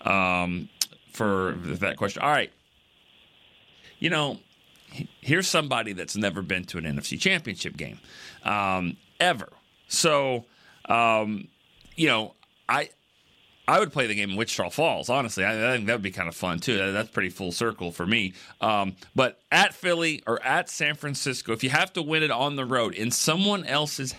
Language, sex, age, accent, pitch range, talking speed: English, male, 40-59, American, 100-150 Hz, 170 wpm